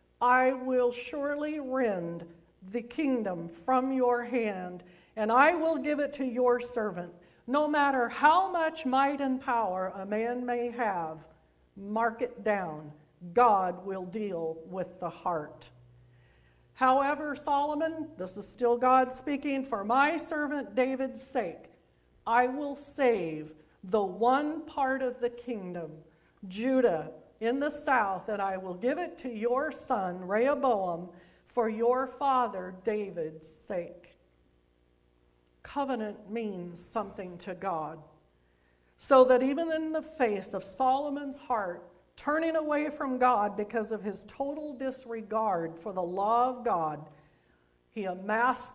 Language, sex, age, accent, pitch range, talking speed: English, female, 50-69, American, 180-260 Hz, 130 wpm